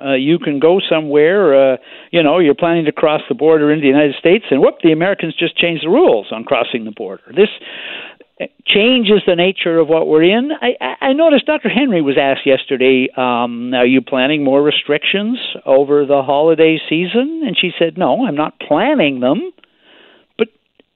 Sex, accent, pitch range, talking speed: male, American, 130-195 Hz, 185 wpm